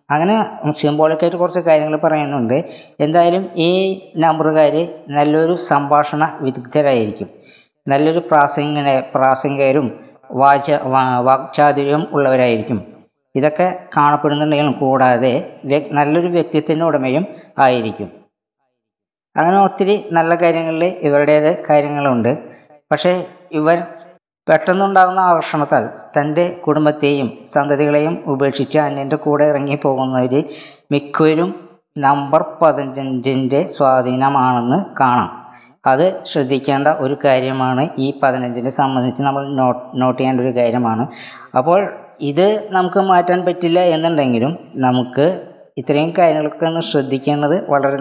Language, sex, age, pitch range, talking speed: Malayalam, female, 20-39, 135-160 Hz, 85 wpm